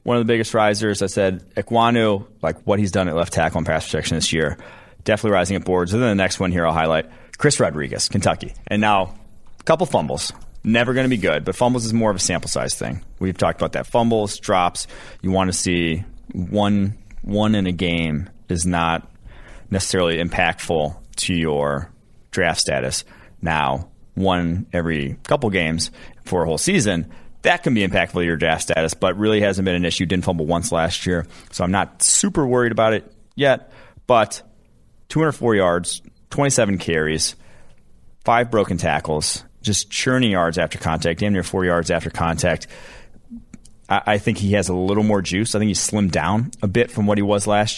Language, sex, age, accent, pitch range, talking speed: English, male, 30-49, American, 85-105 Hz, 190 wpm